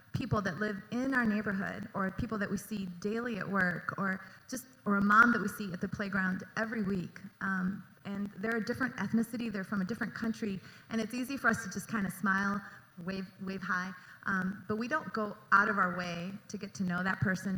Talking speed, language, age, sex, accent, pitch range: 225 wpm, English, 30-49, female, American, 180-210 Hz